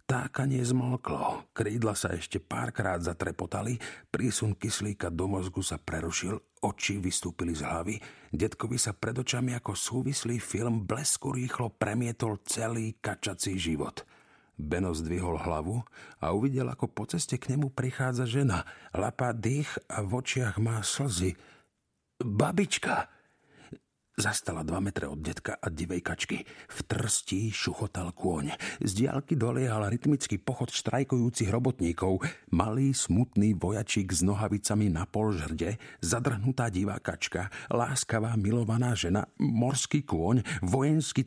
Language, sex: Slovak, male